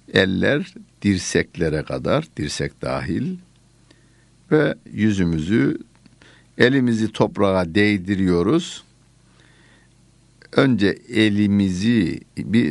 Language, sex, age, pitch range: Turkish, male, 60-79, 80-115 Hz